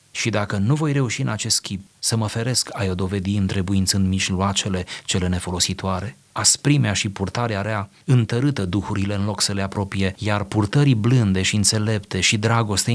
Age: 30-49